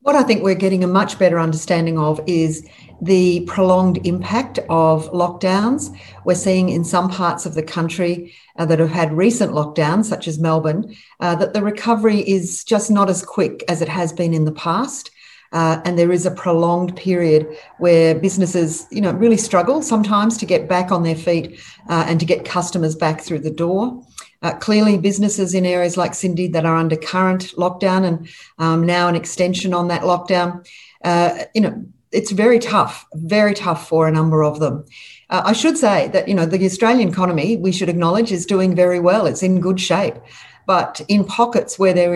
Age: 40-59